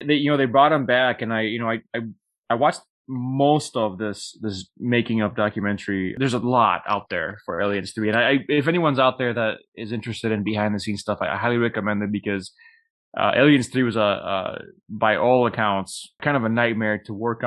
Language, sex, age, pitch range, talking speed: English, male, 20-39, 105-125 Hz, 225 wpm